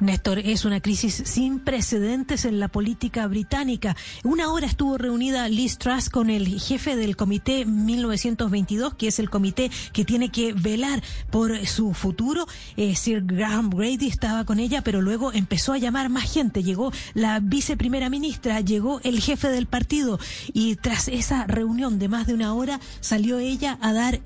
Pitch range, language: 220-270 Hz, Spanish